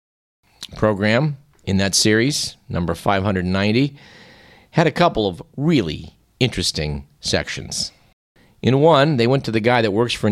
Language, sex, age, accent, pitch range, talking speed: English, male, 50-69, American, 95-125 Hz, 135 wpm